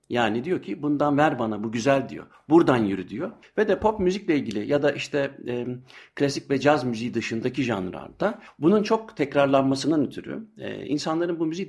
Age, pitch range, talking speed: 60-79, 115-170 Hz, 180 wpm